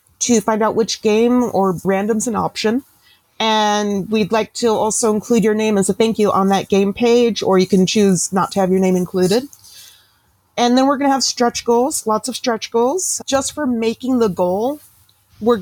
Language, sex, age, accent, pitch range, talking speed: English, female, 30-49, American, 200-240 Hz, 210 wpm